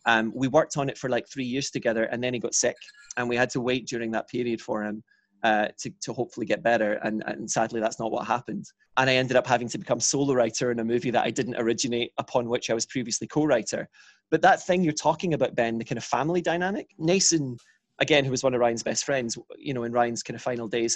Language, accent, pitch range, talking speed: English, British, 120-140 Hz, 255 wpm